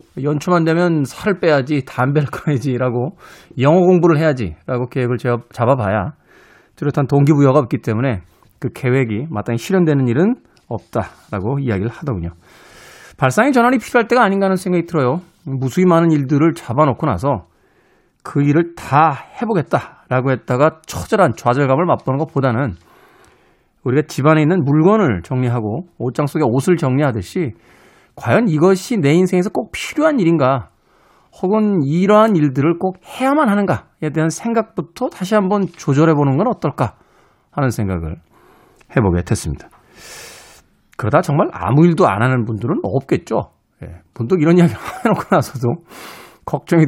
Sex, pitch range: male, 125-175 Hz